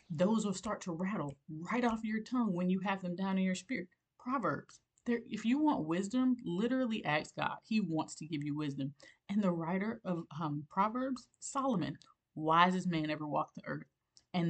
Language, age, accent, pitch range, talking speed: English, 30-49, American, 155-195 Hz, 190 wpm